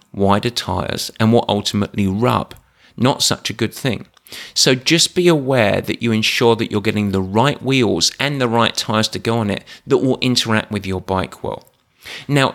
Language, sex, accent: English, male, British